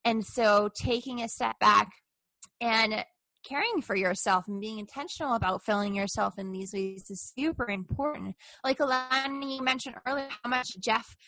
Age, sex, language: 20-39, female, English